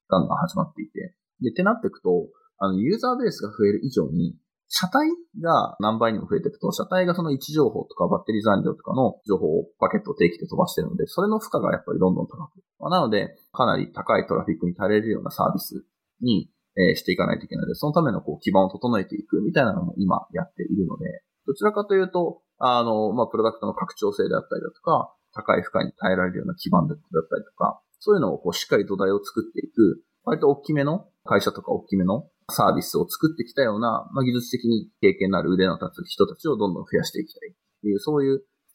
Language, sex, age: Japanese, male, 20-39